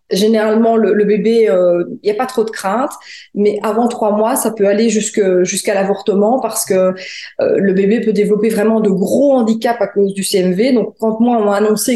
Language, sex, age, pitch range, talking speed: French, female, 20-39, 195-235 Hz, 215 wpm